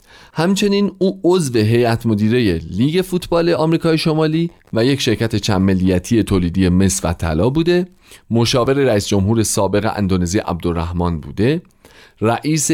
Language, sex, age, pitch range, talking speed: Persian, male, 40-59, 95-150 Hz, 125 wpm